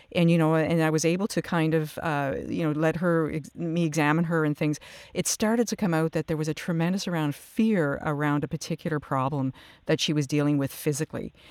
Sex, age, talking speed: female, 50-69, 225 wpm